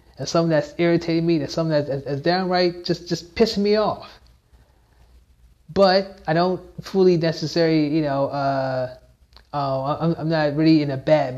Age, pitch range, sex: 20-39, 140-175 Hz, male